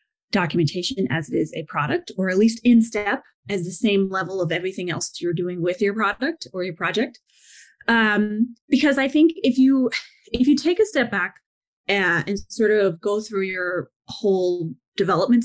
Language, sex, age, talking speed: English, female, 30-49, 185 wpm